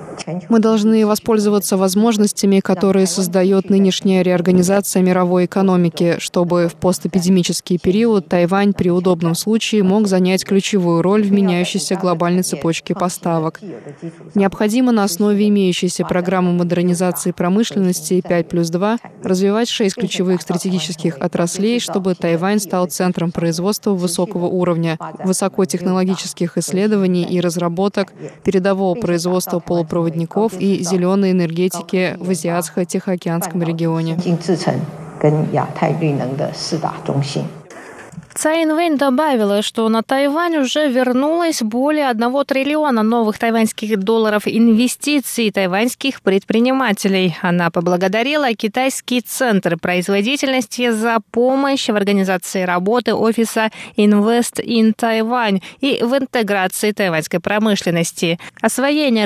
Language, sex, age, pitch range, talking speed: Russian, female, 20-39, 180-225 Hz, 100 wpm